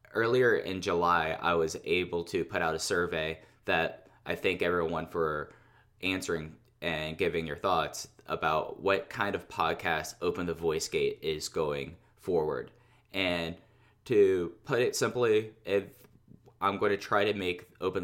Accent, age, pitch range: American, 10-29, 85-115 Hz